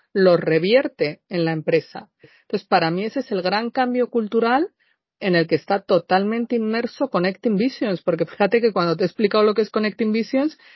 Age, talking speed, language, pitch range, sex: 40-59, 190 wpm, Spanish, 175-245 Hz, female